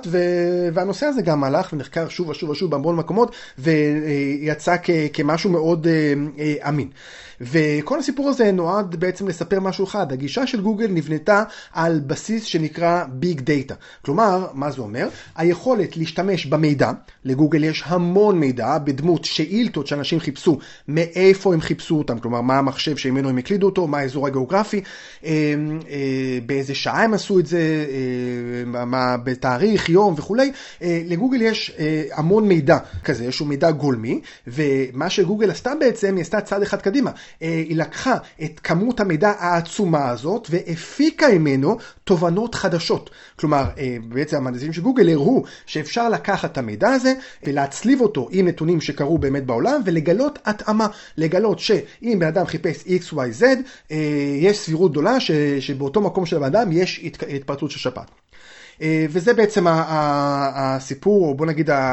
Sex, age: male, 30-49